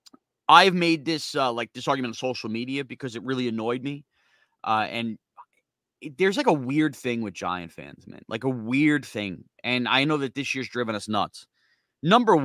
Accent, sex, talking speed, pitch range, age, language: American, male, 200 wpm, 110-145 Hz, 30-49, English